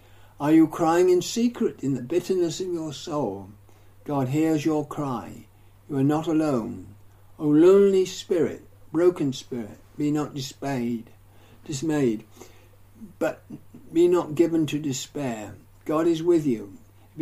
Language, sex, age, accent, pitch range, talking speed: English, male, 60-79, British, 110-175 Hz, 140 wpm